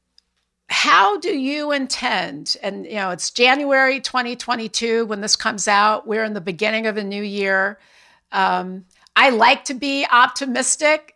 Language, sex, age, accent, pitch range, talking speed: English, female, 50-69, American, 200-255 Hz, 160 wpm